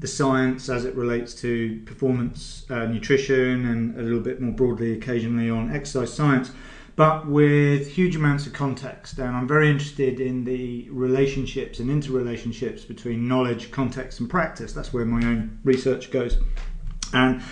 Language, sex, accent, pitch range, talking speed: English, male, British, 125-150 Hz, 160 wpm